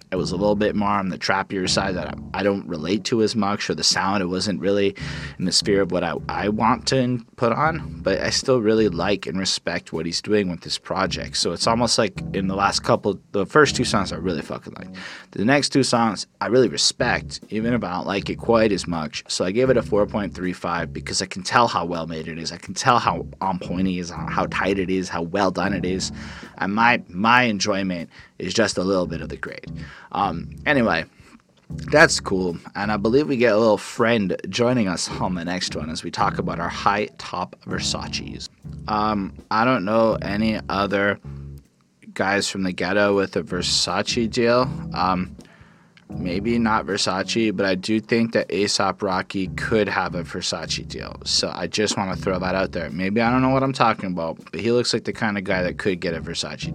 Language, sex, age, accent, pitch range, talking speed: English, male, 20-39, American, 90-110 Hz, 220 wpm